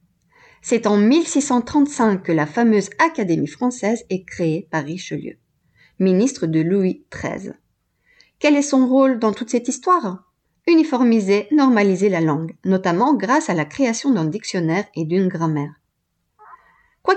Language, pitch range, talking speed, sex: French, 175-270 Hz, 135 wpm, female